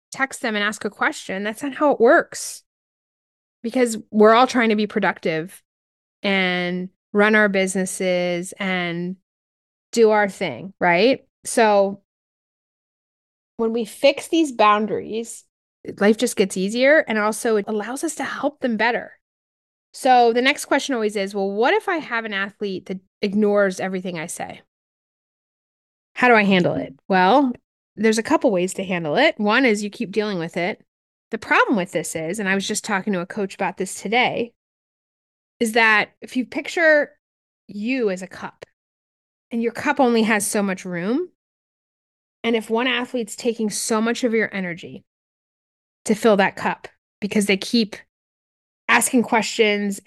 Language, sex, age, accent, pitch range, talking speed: English, female, 20-39, American, 190-240 Hz, 165 wpm